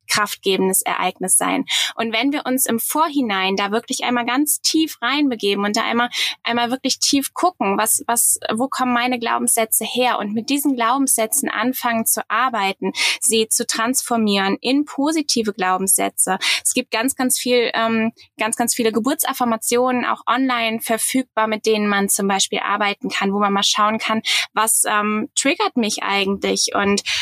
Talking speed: 160 wpm